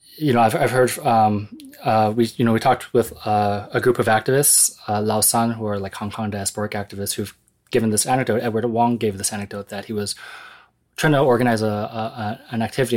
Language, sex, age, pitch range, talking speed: English, male, 20-39, 100-120 Hz, 220 wpm